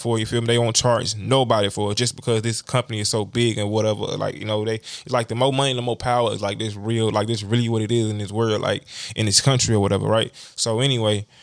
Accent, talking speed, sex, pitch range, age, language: American, 280 wpm, male, 110-130 Hz, 20-39, English